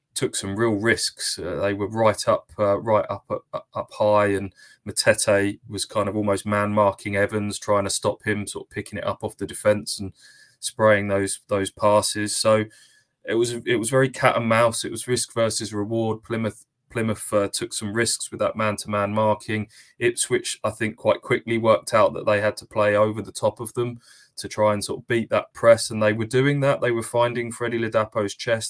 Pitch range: 100-115 Hz